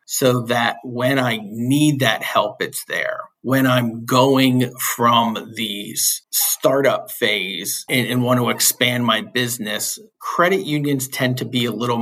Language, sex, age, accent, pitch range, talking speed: English, male, 50-69, American, 120-140 Hz, 150 wpm